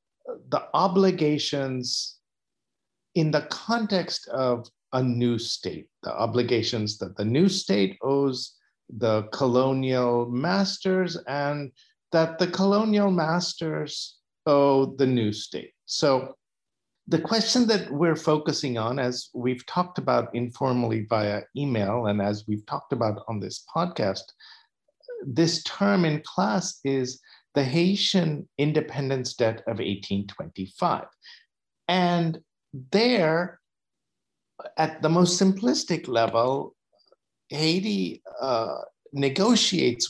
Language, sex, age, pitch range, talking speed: English, male, 50-69, 120-185 Hz, 105 wpm